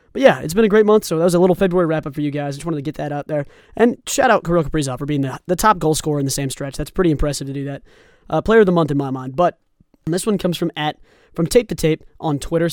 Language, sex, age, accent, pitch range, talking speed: English, male, 20-39, American, 145-190 Hz, 320 wpm